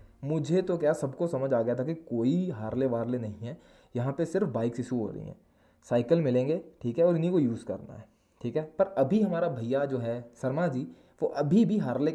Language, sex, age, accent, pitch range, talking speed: Hindi, male, 20-39, native, 125-175 Hz, 225 wpm